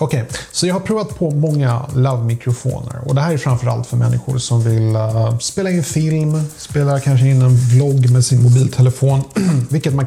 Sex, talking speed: male, 190 wpm